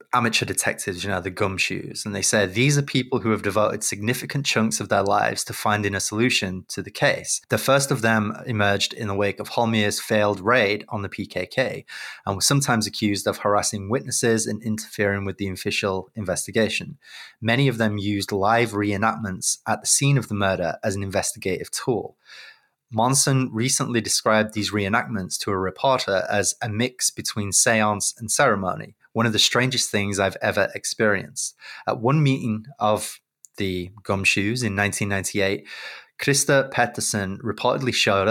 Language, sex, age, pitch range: English, male, 20-39, 100-120 Hz